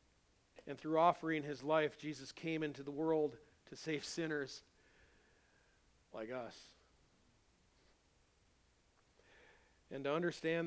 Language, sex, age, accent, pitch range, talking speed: English, male, 40-59, American, 130-170 Hz, 100 wpm